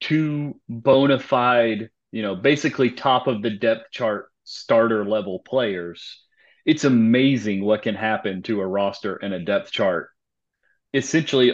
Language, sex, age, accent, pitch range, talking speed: English, male, 30-49, American, 110-140 Hz, 140 wpm